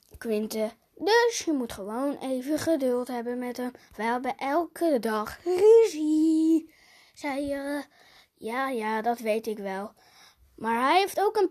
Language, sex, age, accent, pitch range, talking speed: Dutch, female, 20-39, Dutch, 235-360 Hz, 145 wpm